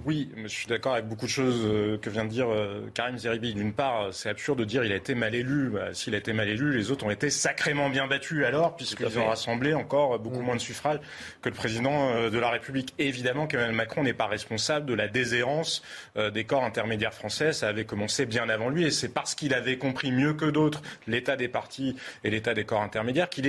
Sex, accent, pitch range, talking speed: male, French, 115-155 Hz, 230 wpm